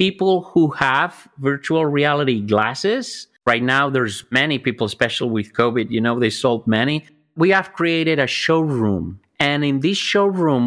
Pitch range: 135-160 Hz